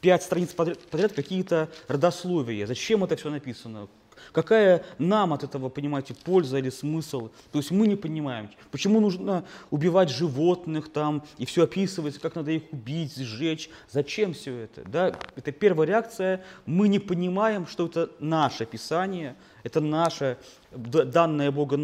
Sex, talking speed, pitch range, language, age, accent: male, 145 wpm, 140-185 Hz, Russian, 20-39, native